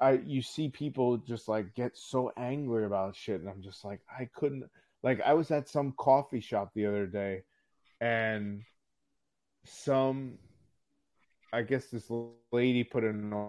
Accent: American